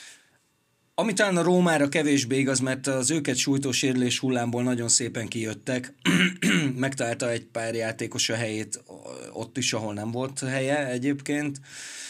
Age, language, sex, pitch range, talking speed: 20-39, Hungarian, male, 110-135 Hz, 130 wpm